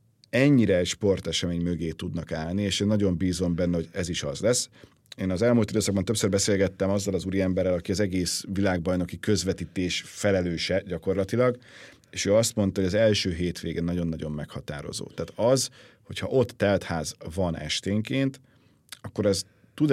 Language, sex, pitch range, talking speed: Hungarian, male, 90-110 Hz, 155 wpm